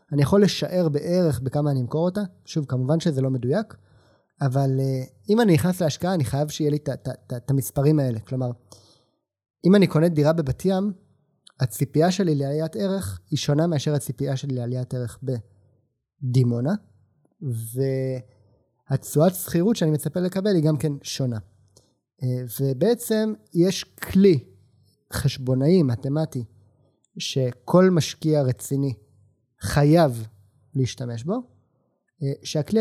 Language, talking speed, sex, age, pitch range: Hebrew, 120 wpm, male, 30-49, 125-175 Hz